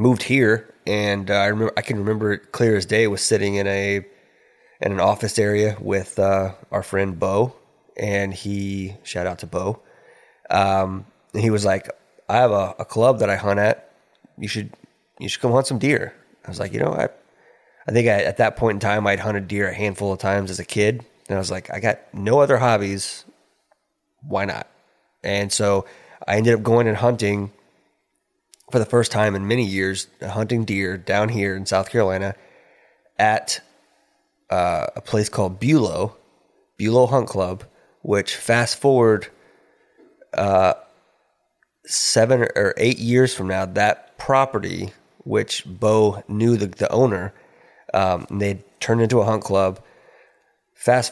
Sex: male